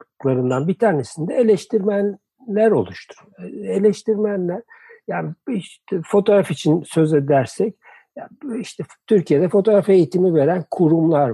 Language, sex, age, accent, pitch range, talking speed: Turkish, male, 60-79, native, 145-205 Hz, 100 wpm